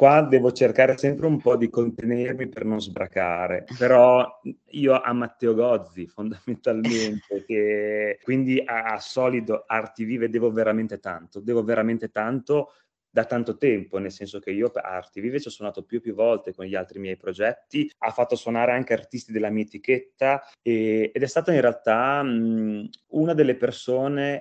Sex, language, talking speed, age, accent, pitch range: male, Italian, 170 wpm, 30-49, native, 105-125 Hz